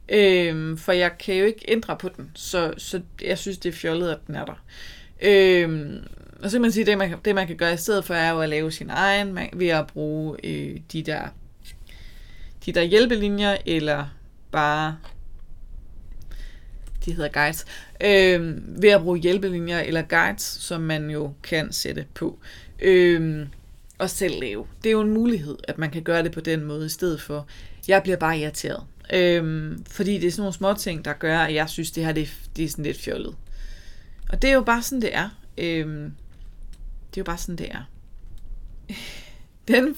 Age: 20-39